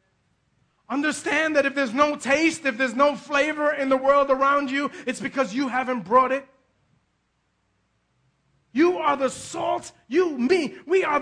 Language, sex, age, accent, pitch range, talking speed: English, male, 30-49, American, 255-310 Hz, 155 wpm